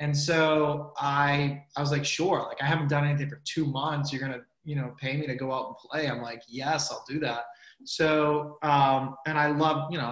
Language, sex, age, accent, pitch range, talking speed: English, male, 20-39, American, 135-160 Hz, 235 wpm